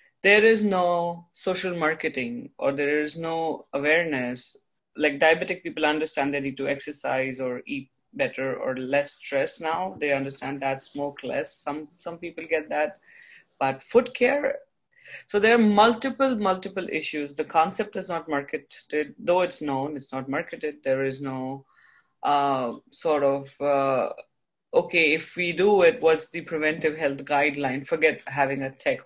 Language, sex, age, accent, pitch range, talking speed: English, female, 30-49, Indian, 135-165 Hz, 155 wpm